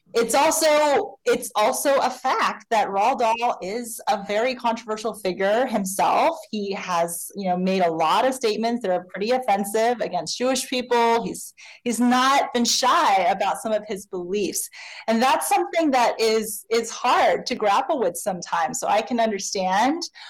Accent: American